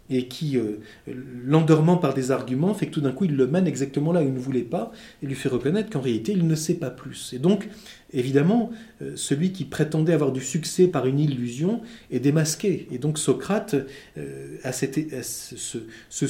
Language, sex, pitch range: French, male, 130-180 Hz